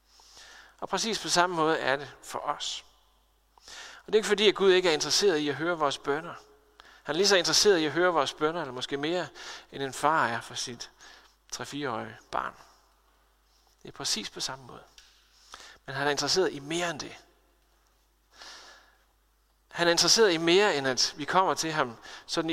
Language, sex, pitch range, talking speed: Danish, male, 145-195 Hz, 190 wpm